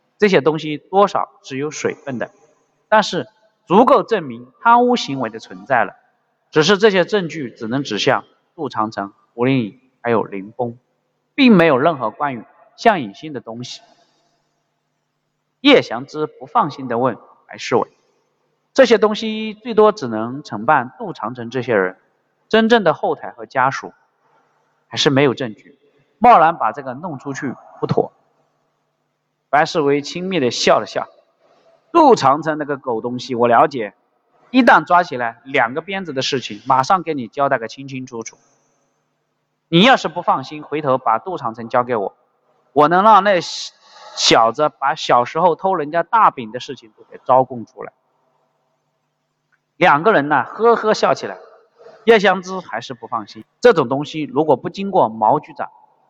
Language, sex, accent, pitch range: Chinese, male, native, 125-195 Hz